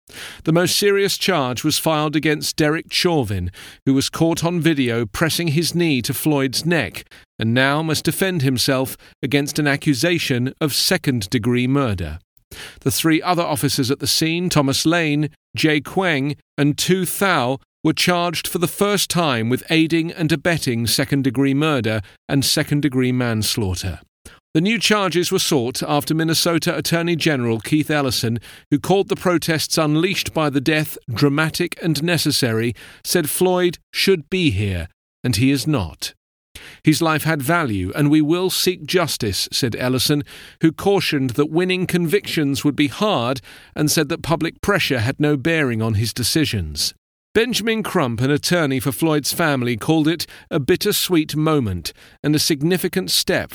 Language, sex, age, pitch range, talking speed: English, male, 40-59, 125-165 Hz, 155 wpm